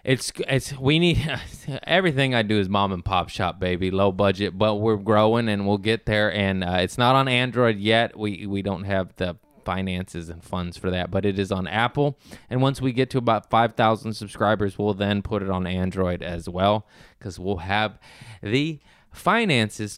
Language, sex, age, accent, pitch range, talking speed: English, male, 20-39, American, 95-120 Hz, 195 wpm